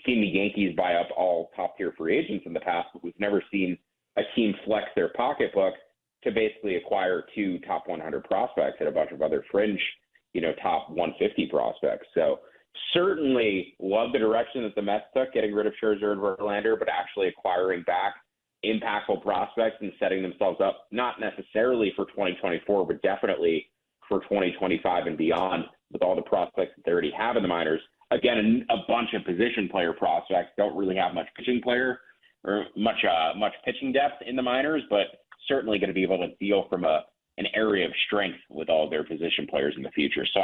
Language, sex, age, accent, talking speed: English, male, 30-49, American, 195 wpm